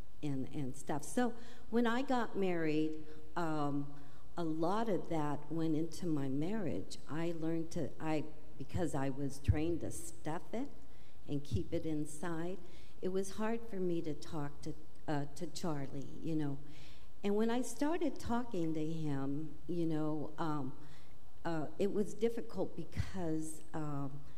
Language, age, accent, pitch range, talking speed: English, 50-69, American, 150-185 Hz, 150 wpm